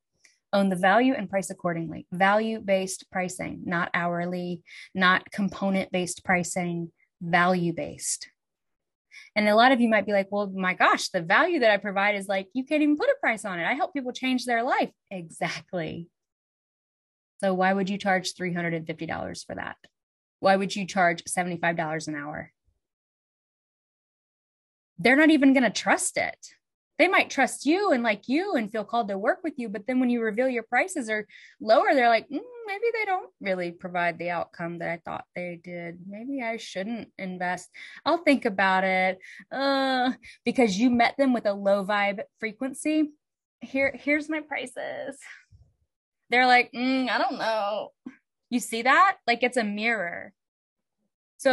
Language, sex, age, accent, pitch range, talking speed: English, female, 20-39, American, 185-265 Hz, 165 wpm